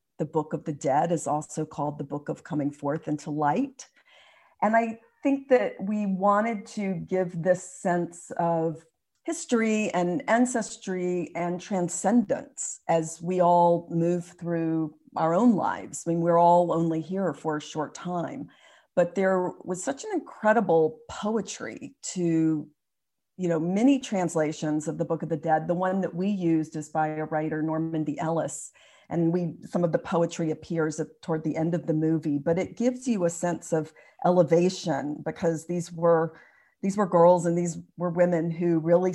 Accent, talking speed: American, 170 wpm